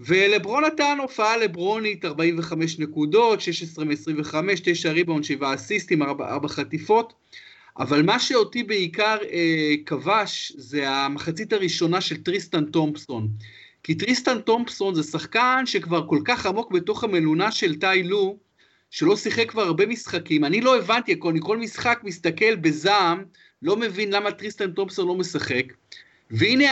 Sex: male